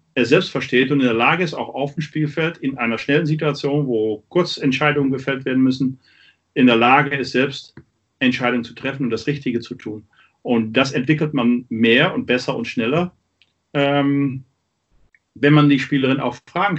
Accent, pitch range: German, 115-145 Hz